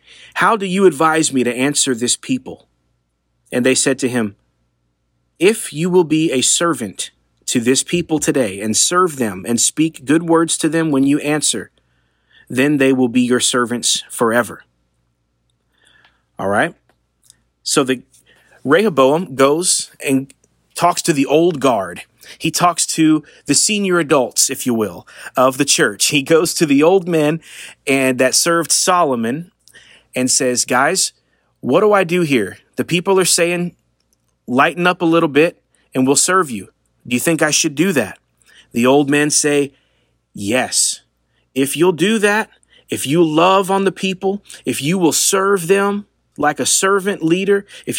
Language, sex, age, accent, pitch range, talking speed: English, male, 30-49, American, 115-175 Hz, 165 wpm